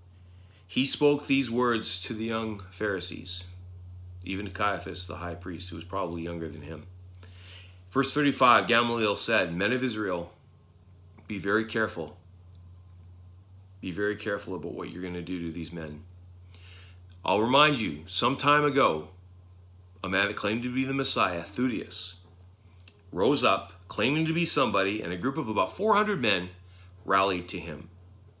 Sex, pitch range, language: male, 90-110 Hz, English